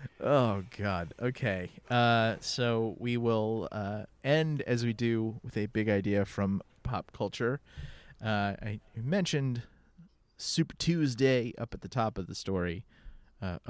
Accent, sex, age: American, male, 30-49